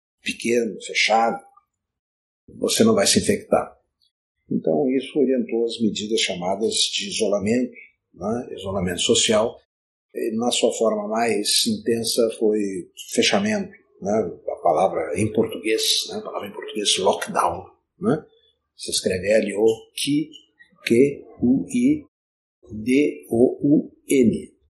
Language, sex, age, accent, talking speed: Portuguese, male, 50-69, Brazilian, 100 wpm